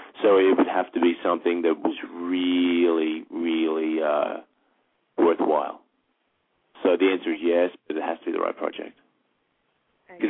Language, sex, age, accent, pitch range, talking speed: English, male, 30-49, American, 90-135 Hz, 155 wpm